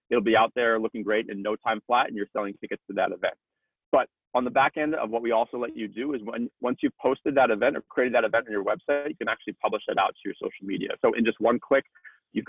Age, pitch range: 30-49, 105-135 Hz